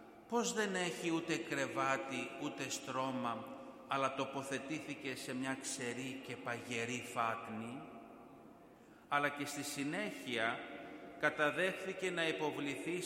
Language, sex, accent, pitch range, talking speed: Greek, male, native, 135-180 Hz, 100 wpm